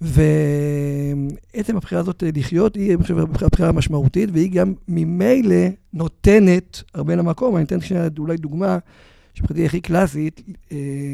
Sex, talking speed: male, 120 wpm